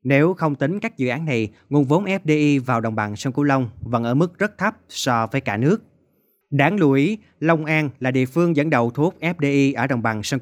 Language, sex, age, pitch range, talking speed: Vietnamese, male, 20-39, 115-150 Hz, 240 wpm